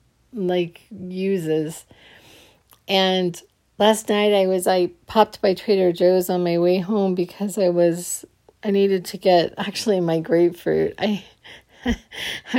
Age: 40-59